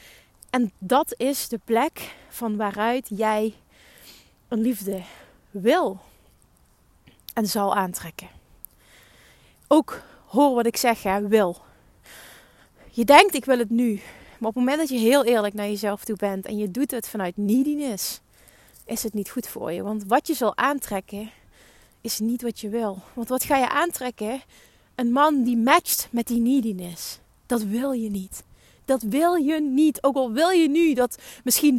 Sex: female